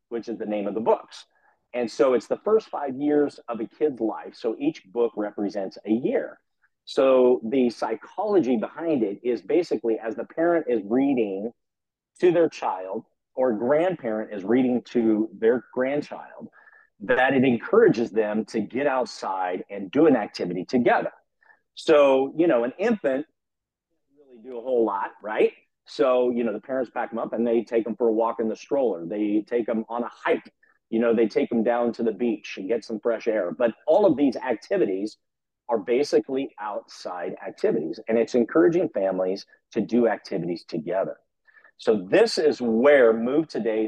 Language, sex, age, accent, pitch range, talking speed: English, male, 40-59, American, 110-135 Hz, 180 wpm